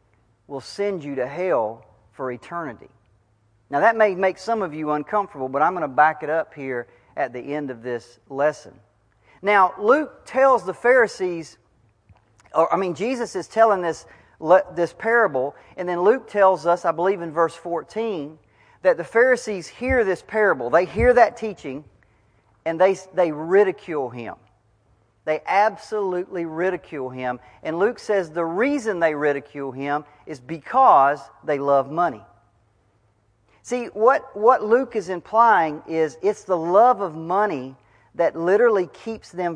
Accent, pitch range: American, 130-195 Hz